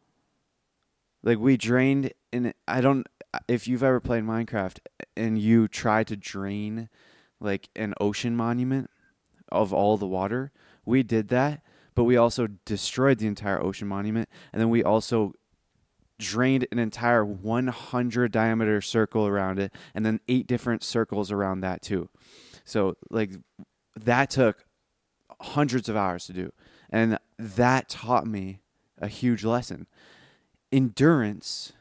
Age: 20-39